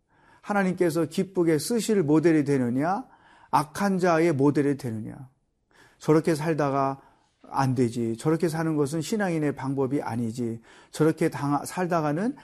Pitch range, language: 145-185 Hz, Korean